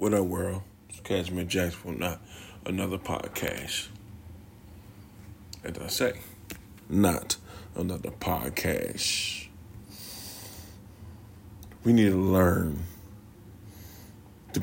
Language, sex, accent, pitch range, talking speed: English, male, American, 95-105 Hz, 85 wpm